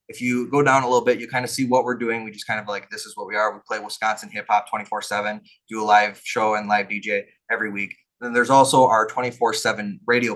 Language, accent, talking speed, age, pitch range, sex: English, American, 265 wpm, 20-39, 105-130 Hz, male